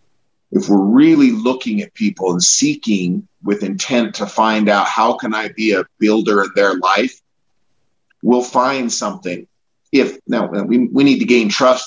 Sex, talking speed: male, 165 wpm